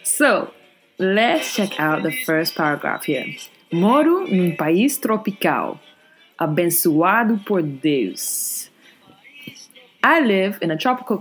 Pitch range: 160-220 Hz